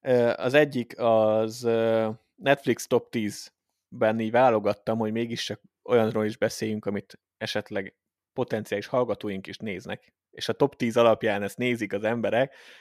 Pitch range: 105-120 Hz